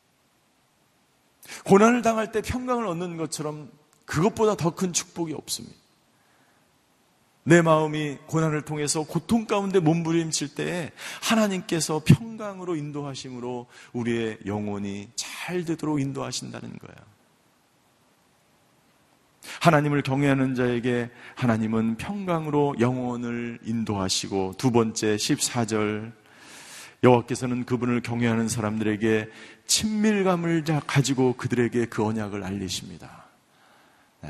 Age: 40-59